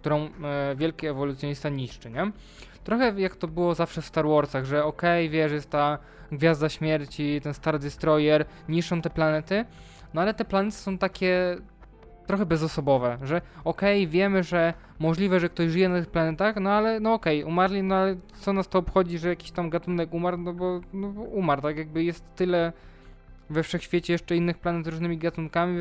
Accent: native